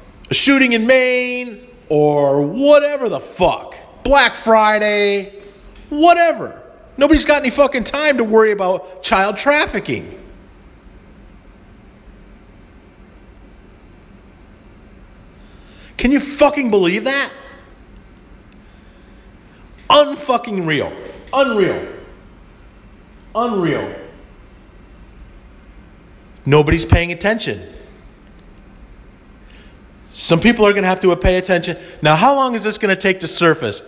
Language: English